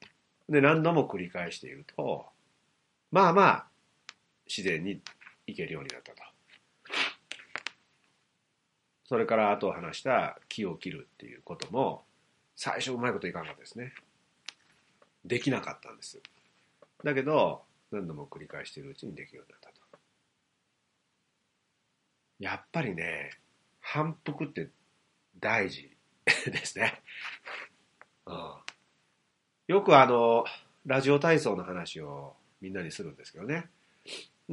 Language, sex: Japanese, male